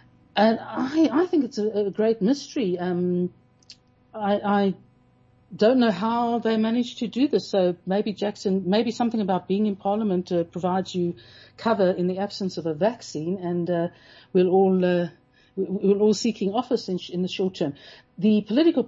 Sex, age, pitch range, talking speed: female, 60-79, 175-215 Hz, 185 wpm